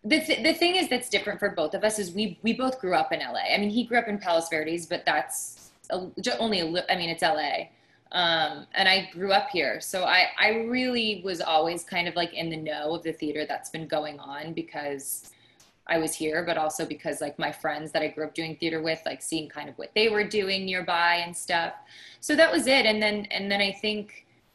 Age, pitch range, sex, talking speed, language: 20-39, 160-200 Hz, female, 245 wpm, English